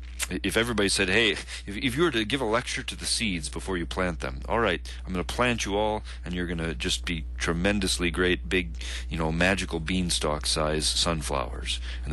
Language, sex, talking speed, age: English, male, 210 wpm, 40-59